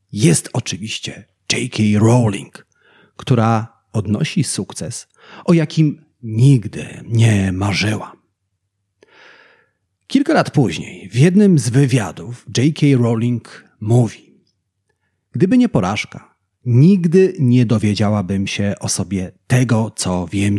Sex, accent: male, native